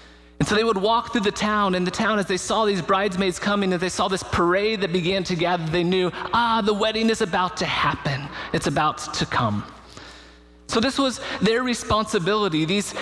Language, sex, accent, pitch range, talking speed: English, male, American, 130-185 Hz, 205 wpm